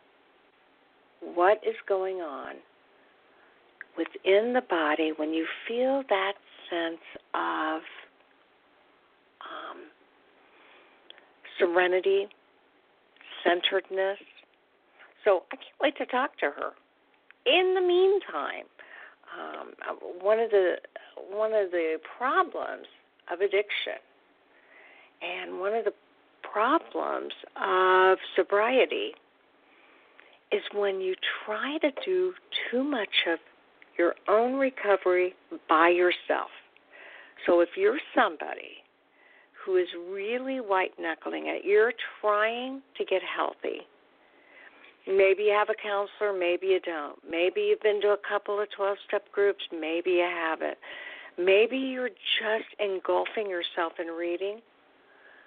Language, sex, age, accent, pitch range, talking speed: English, female, 50-69, American, 180-265 Hz, 105 wpm